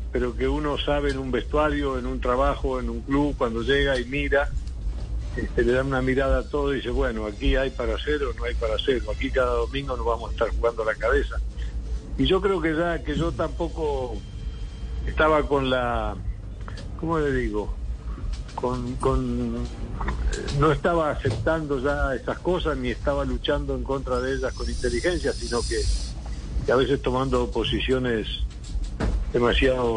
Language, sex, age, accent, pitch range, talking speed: Spanish, male, 60-79, Argentinian, 110-140 Hz, 170 wpm